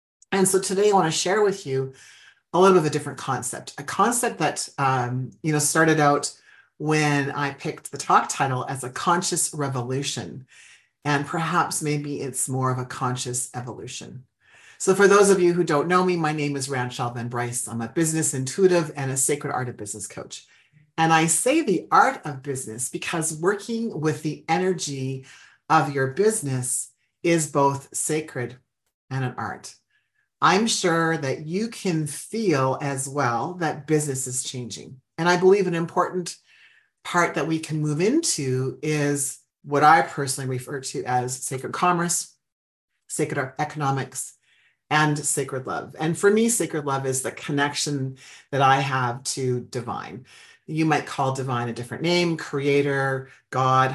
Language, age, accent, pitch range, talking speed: English, 40-59, American, 130-165 Hz, 165 wpm